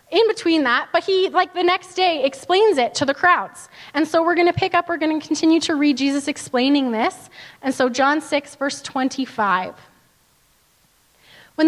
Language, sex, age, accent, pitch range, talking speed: English, female, 20-39, American, 265-340 Hz, 190 wpm